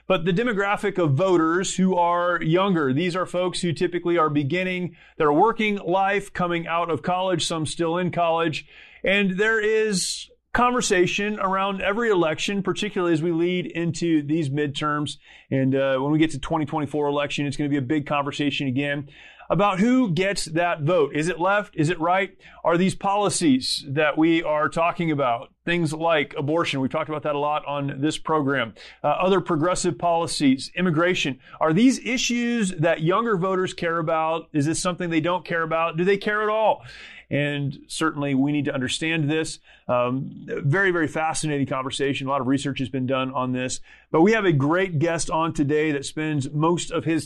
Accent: American